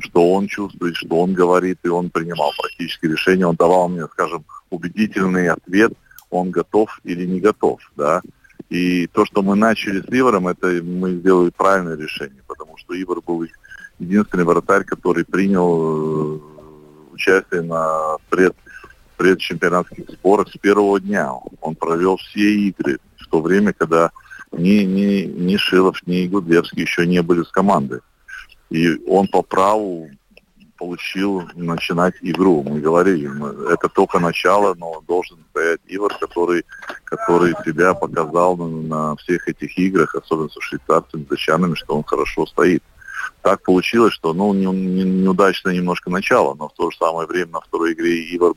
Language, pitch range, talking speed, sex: Russian, 85-95 Hz, 150 wpm, male